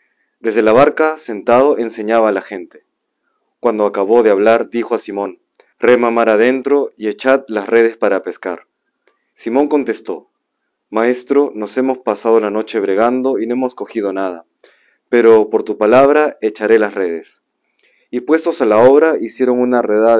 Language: Spanish